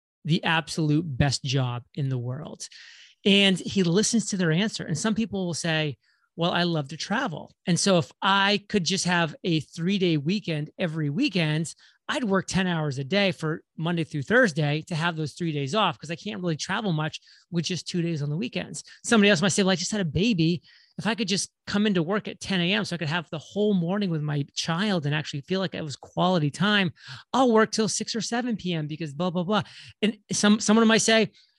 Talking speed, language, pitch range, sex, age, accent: 225 wpm, English, 155-205 Hz, male, 30-49, American